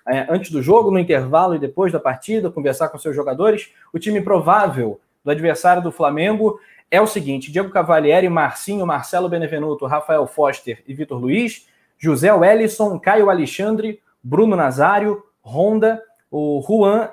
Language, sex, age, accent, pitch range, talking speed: Portuguese, male, 20-39, Brazilian, 145-190 Hz, 145 wpm